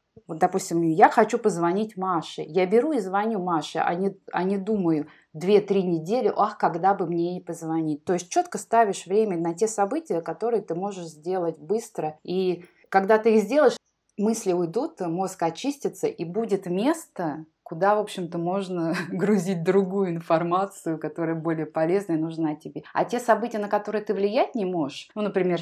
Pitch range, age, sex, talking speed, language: 165-205 Hz, 20-39, female, 175 wpm, Russian